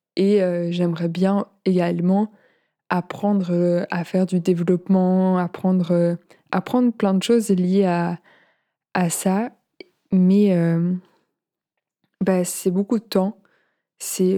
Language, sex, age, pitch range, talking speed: French, female, 20-39, 175-200 Hz, 120 wpm